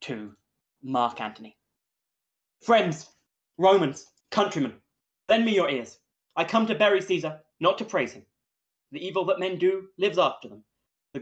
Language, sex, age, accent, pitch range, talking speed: English, male, 20-39, British, 175-275 Hz, 150 wpm